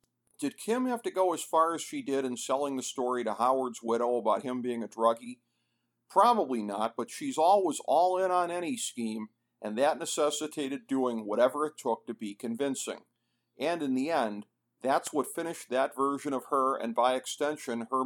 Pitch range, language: 120-160 Hz, English